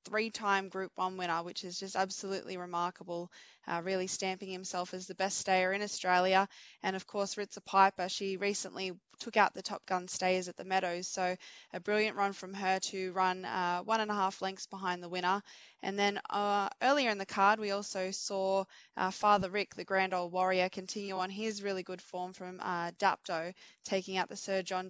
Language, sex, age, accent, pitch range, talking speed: English, female, 20-39, Australian, 185-200 Hz, 200 wpm